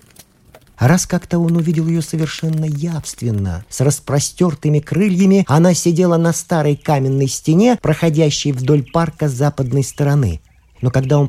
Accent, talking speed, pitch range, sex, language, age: native, 135 wpm, 90-145 Hz, male, Russian, 50-69